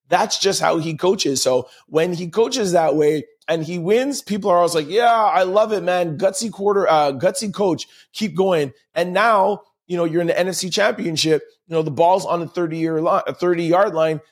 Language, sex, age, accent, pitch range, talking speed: English, male, 20-39, American, 130-175 Hz, 210 wpm